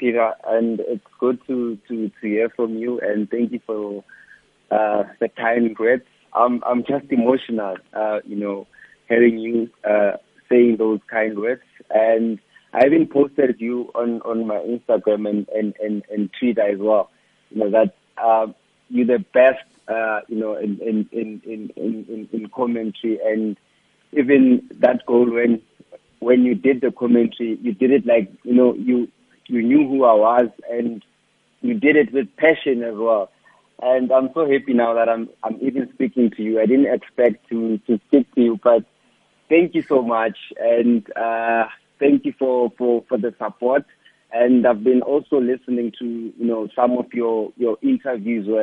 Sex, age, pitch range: male, 30-49, 110-125 Hz